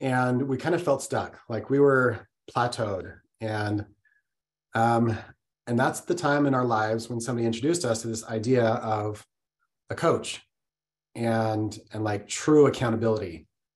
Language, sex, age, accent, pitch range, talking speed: English, male, 30-49, American, 115-135 Hz, 150 wpm